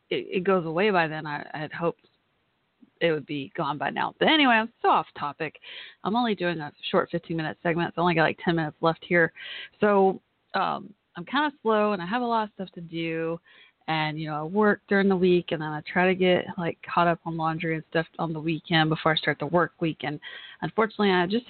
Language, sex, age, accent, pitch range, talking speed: English, female, 30-49, American, 165-220 Hz, 245 wpm